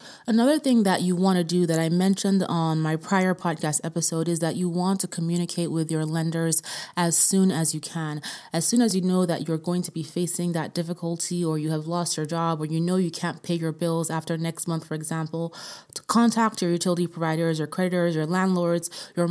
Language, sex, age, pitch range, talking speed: English, female, 20-39, 165-190 Hz, 220 wpm